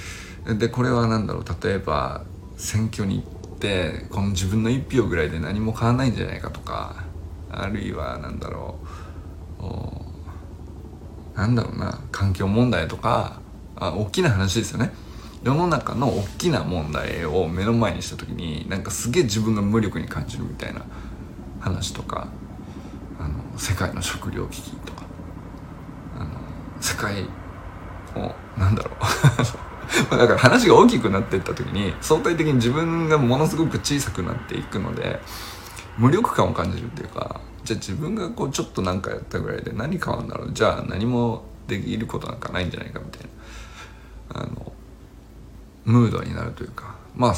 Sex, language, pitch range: male, Japanese, 90-120 Hz